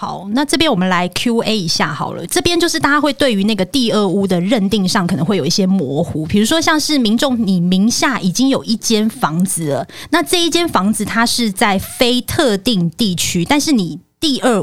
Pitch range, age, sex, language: 180-240 Hz, 20-39, female, Chinese